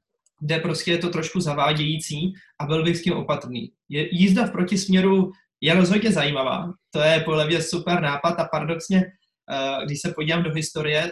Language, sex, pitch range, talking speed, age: Slovak, male, 145-180 Hz, 175 wpm, 20-39